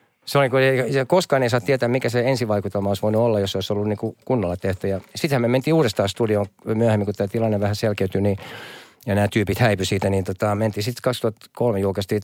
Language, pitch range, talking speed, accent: Finnish, 100-130 Hz, 210 wpm, native